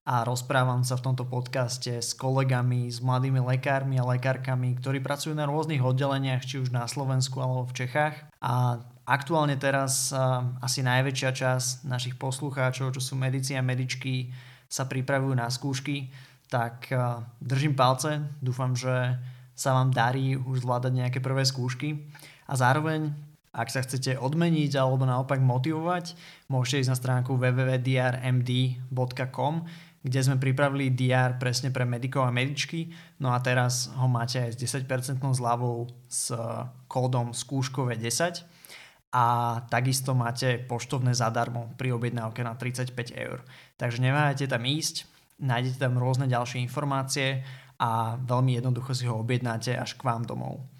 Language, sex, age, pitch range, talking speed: Slovak, male, 20-39, 125-135 Hz, 140 wpm